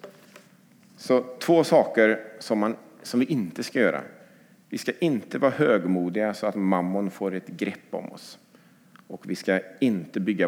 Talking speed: 160 wpm